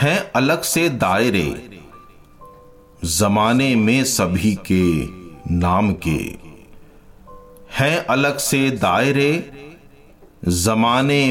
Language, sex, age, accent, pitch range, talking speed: Hindi, male, 50-69, native, 90-130 Hz, 80 wpm